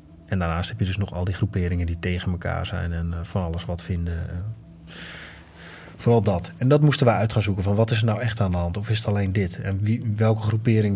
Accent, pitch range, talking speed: Dutch, 95-110 Hz, 245 wpm